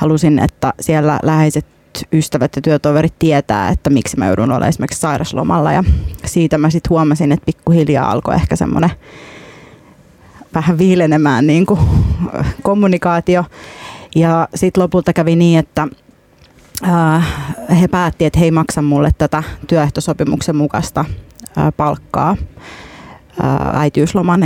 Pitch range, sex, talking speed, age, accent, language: 150-165 Hz, female, 115 wpm, 30-49, native, Finnish